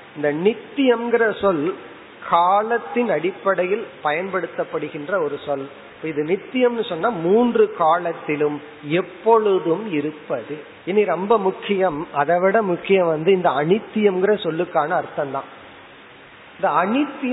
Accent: native